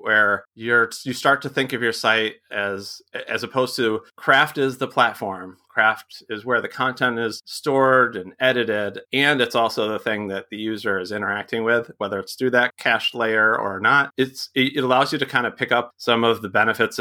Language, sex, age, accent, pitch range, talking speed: English, male, 30-49, American, 105-130 Hz, 205 wpm